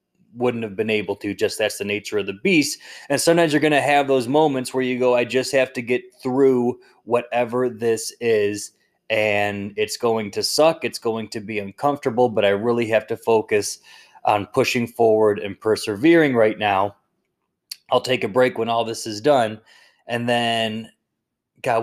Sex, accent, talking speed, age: male, American, 185 wpm, 20-39